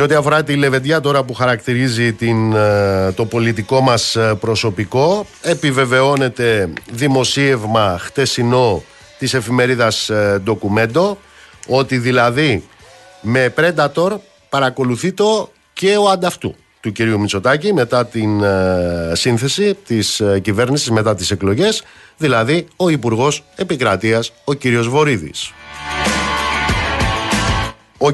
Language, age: Greek, 50-69